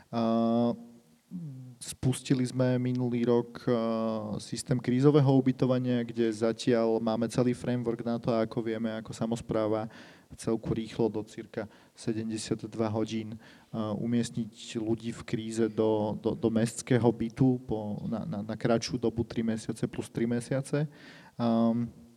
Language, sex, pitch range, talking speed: Slovak, male, 110-125 Hz, 120 wpm